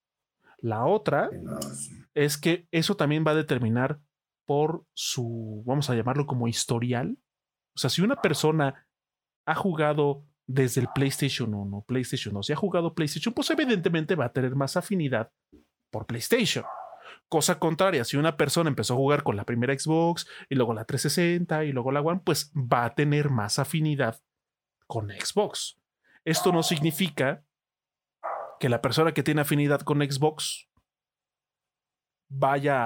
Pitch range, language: 130-165 Hz, Spanish